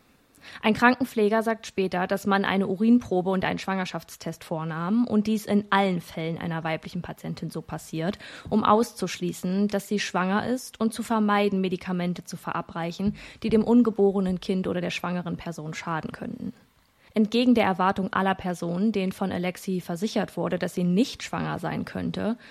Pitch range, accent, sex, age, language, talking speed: 185-215 Hz, German, female, 20-39, German, 160 wpm